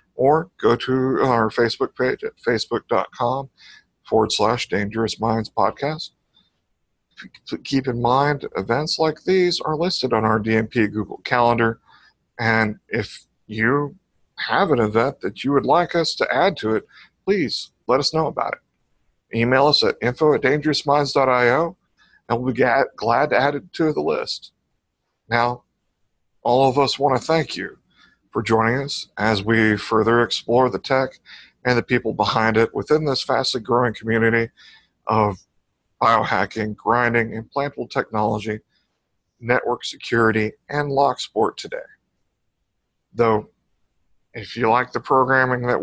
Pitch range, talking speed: 110-140 Hz, 135 wpm